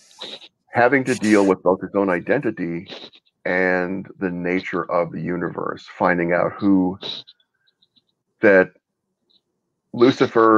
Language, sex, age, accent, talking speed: English, male, 50-69, American, 110 wpm